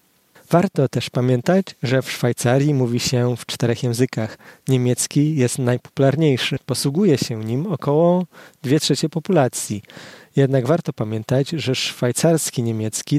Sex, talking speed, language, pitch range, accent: male, 125 wpm, Polish, 125-150 Hz, native